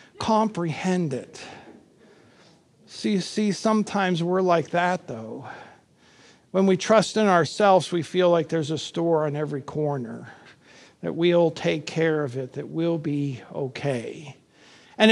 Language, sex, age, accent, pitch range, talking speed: English, male, 50-69, American, 150-180 Hz, 135 wpm